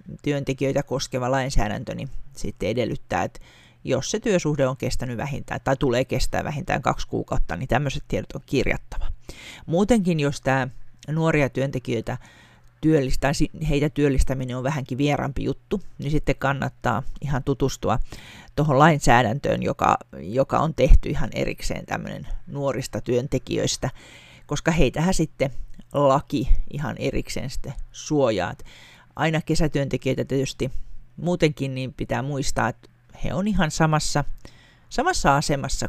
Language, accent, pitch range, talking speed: Finnish, native, 130-150 Hz, 125 wpm